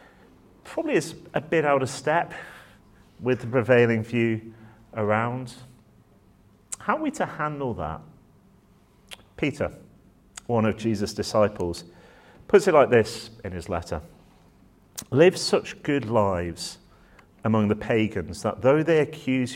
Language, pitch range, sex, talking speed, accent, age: English, 95-125 Hz, male, 125 wpm, British, 40-59